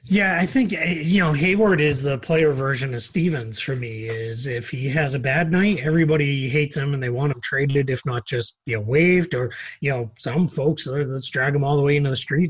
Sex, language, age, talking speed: male, English, 30-49, 240 wpm